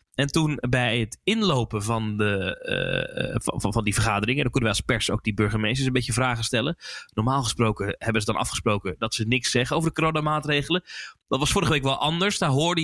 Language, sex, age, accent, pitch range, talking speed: Dutch, male, 20-39, Dutch, 120-155 Hz, 215 wpm